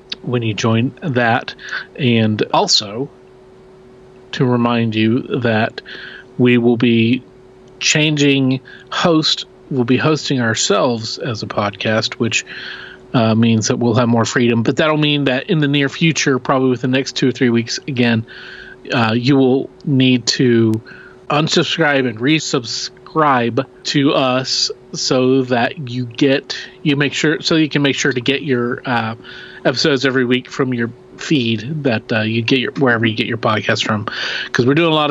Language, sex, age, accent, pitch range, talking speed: English, male, 40-59, American, 120-145 Hz, 160 wpm